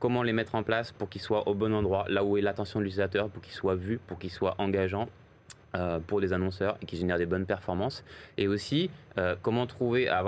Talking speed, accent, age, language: 235 wpm, French, 20-39, French